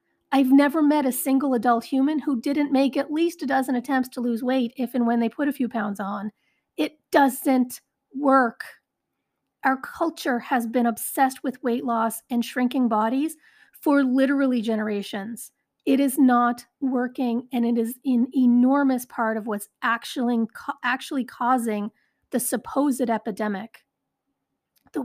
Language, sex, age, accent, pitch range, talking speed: English, female, 40-59, American, 230-285 Hz, 150 wpm